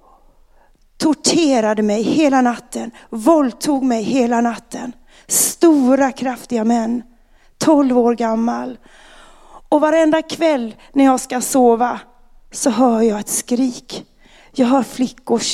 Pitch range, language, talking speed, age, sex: 230-275 Hz, Swedish, 110 wpm, 30-49, female